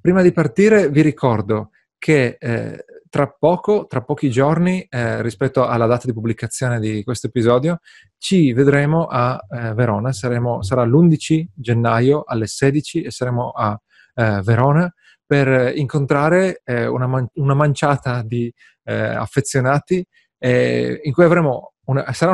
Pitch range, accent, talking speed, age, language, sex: 120-150 Hz, native, 125 wpm, 30-49, Italian, male